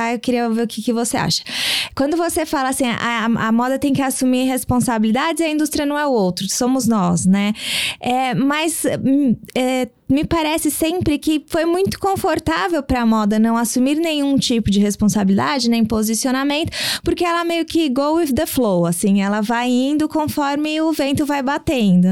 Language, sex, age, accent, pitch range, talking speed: Portuguese, female, 20-39, Brazilian, 230-285 Hz, 175 wpm